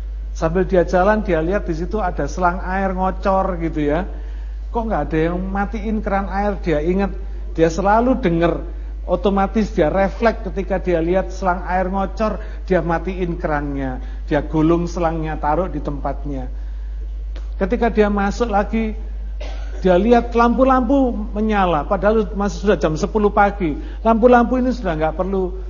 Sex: male